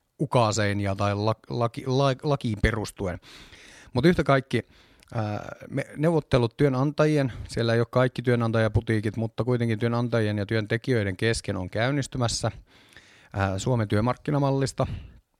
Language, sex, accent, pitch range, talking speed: Finnish, male, native, 105-125 Hz, 105 wpm